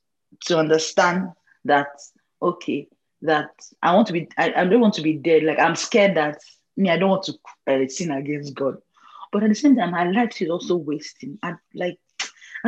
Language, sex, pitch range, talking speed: English, female, 150-200 Hz, 195 wpm